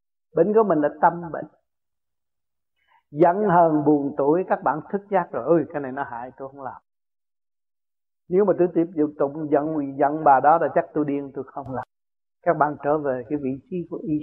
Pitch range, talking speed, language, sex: 120-175 Hz, 205 wpm, Vietnamese, male